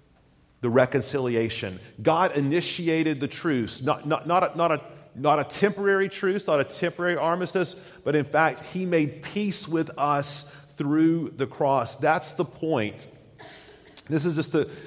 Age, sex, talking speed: 40-59, male, 155 wpm